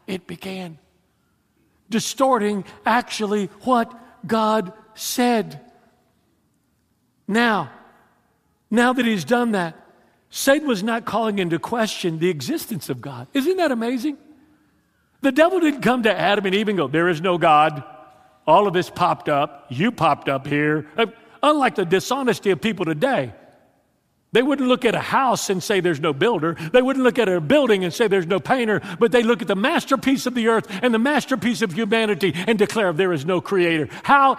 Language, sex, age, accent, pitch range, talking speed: English, male, 50-69, American, 150-230 Hz, 170 wpm